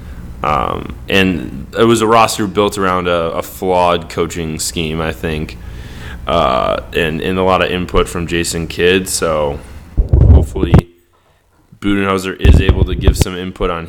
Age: 10-29